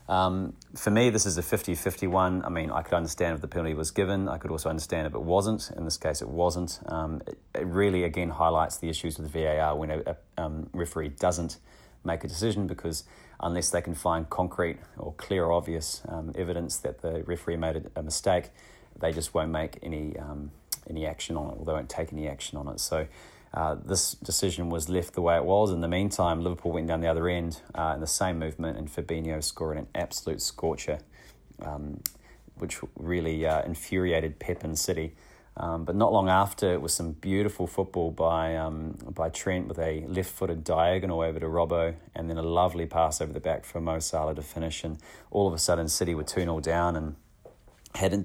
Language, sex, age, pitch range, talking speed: English, male, 30-49, 80-90 Hz, 210 wpm